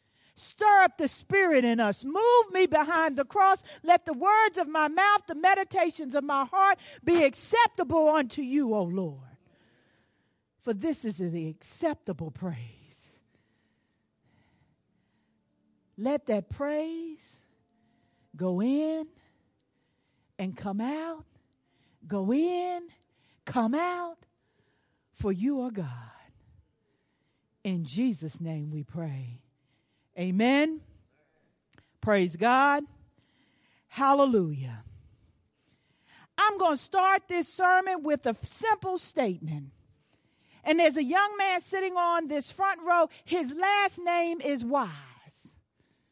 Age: 50-69